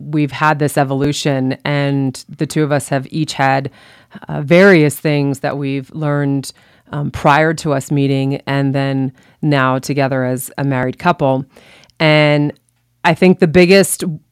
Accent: American